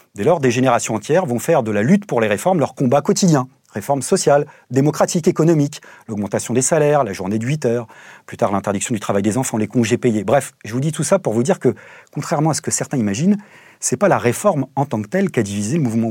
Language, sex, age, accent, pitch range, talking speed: French, male, 40-59, French, 115-170 Hz, 255 wpm